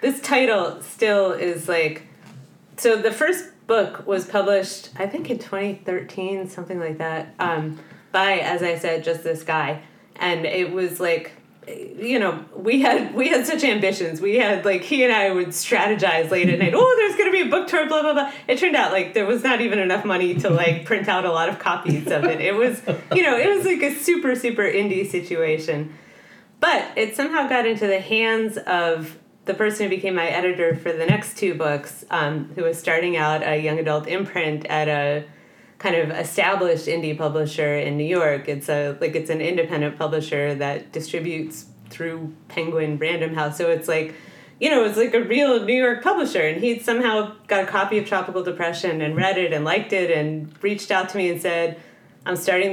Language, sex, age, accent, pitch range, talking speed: English, female, 30-49, American, 165-220 Hz, 205 wpm